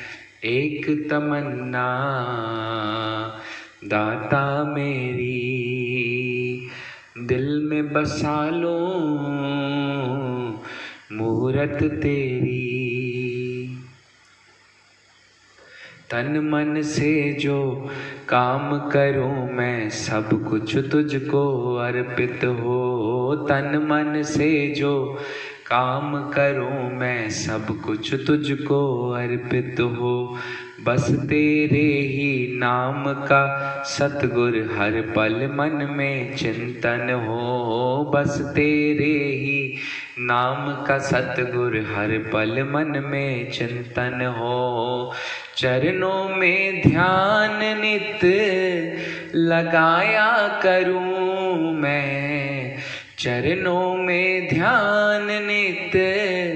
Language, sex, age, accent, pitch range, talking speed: Hindi, male, 20-39, native, 125-150 Hz, 70 wpm